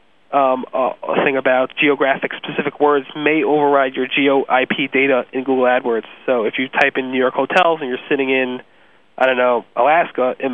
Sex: male